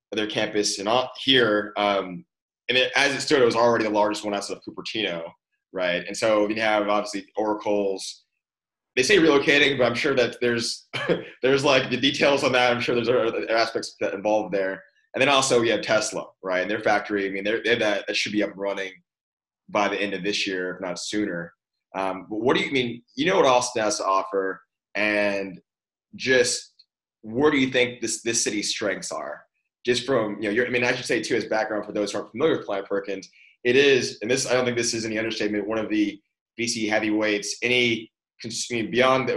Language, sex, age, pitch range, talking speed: English, male, 20-39, 105-125 Hz, 220 wpm